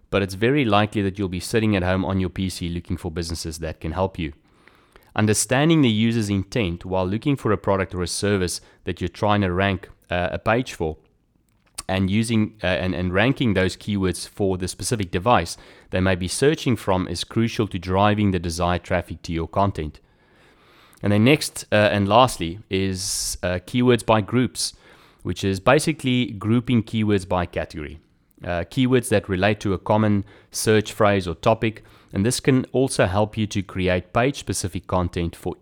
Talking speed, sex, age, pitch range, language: 180 wpm, male, 30-49, 90-110 Hz, English